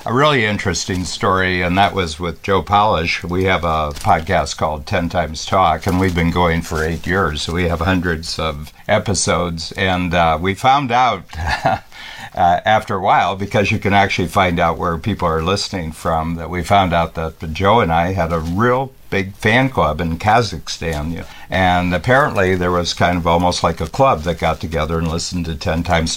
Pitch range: 85-100 Hz